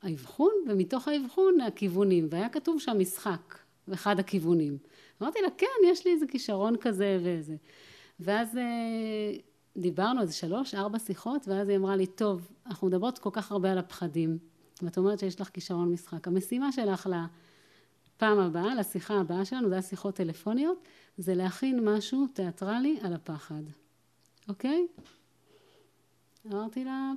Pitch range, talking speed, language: 180-230 Hz, 135 wpm, Hebrew